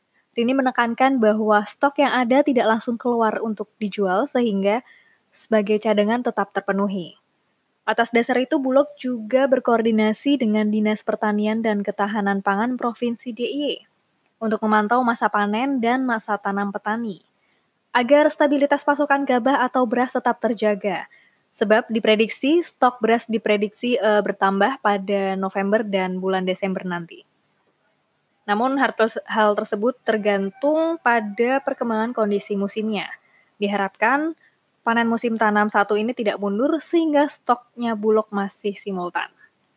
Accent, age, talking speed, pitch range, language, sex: native, 20-39, 125 wpm, 210-250 Hz, Indonesian, female